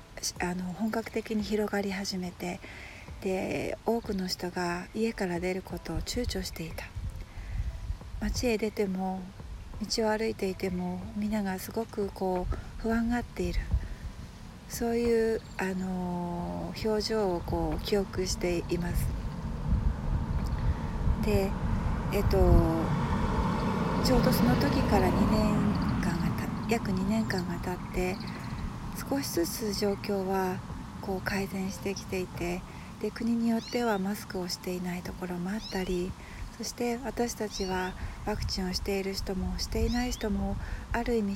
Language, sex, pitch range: Japanese, female, 140-215 Hz